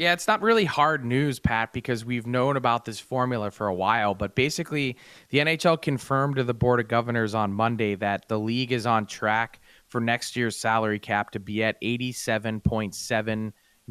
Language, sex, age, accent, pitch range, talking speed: English, male, 20-39, American, 115-140 Hz, 185 wpm